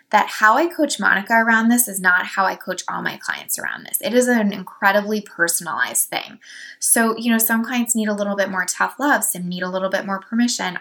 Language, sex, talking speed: English, female, 235 wpm